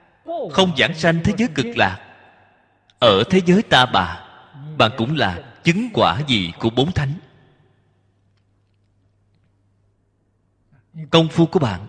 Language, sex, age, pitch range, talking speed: Vietnamese, male, 20-39, 100-150 Hz, 125 wpm